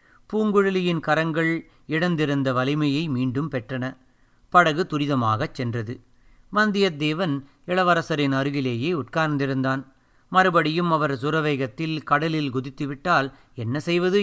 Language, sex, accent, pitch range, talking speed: Tamil, male, native, 135-170 Hz, 85 wpm